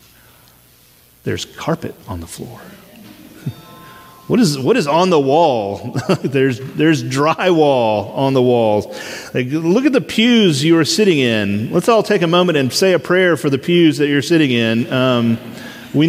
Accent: American